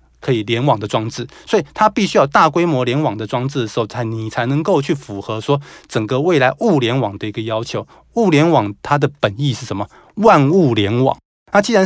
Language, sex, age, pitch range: Chinese, male, 20-39, 115-160 Hz